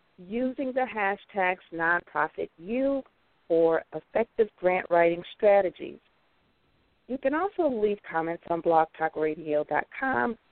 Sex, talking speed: female, 90 wpm